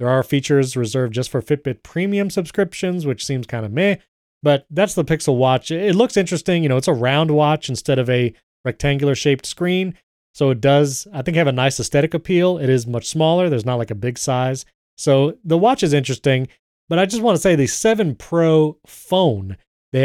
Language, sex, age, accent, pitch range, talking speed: English, male, 30-49, American, 125-160 Hz, 210 wpm